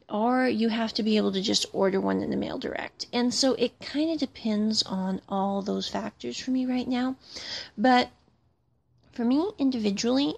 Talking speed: 185 wpm